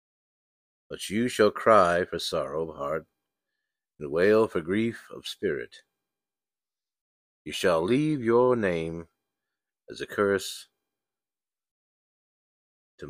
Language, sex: English, male